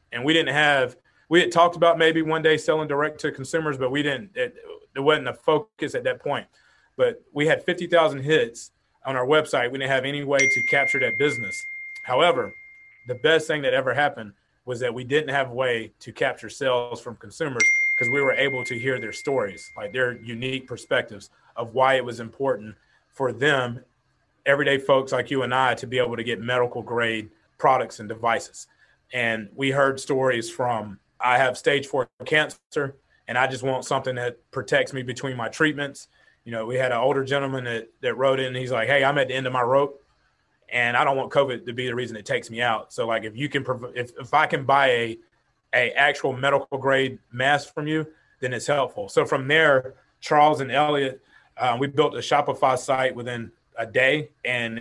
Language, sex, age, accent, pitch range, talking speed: English, male, 30-49, American, 125-150 Hz, 210 wpm